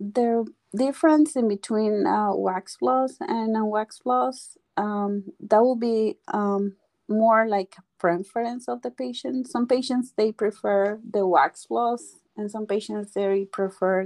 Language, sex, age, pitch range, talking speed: English, female, 30-49, 195-235 Hz, 140 wpm